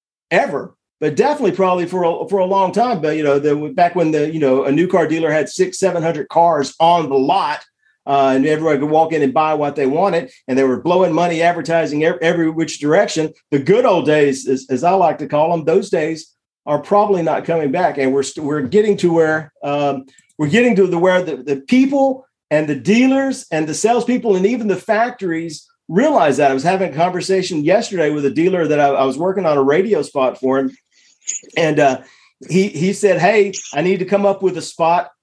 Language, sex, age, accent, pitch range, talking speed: English, male, 50-69, American, 145-195 Hz, 220 wpm